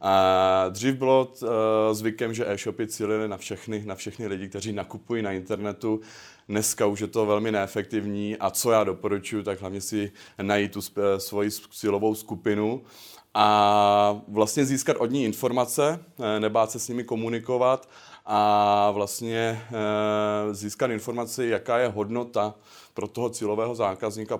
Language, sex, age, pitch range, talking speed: Czech, male, 30-49, 100-115 Hz, 140 wpm